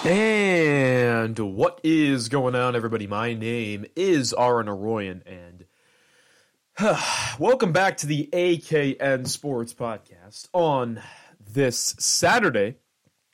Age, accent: 30-49, American